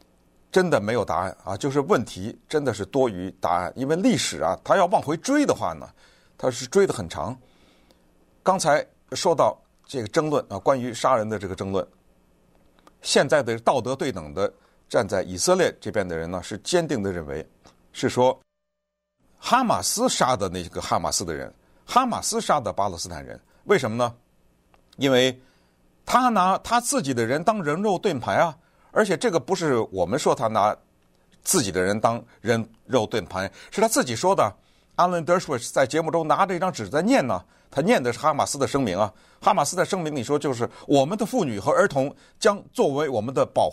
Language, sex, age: Chinese, male, 60-79